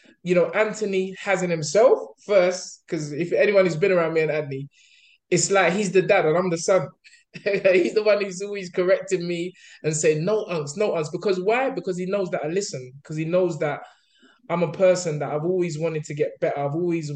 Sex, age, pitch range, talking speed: male, 20-39, 155-200 Hz, 215 wpm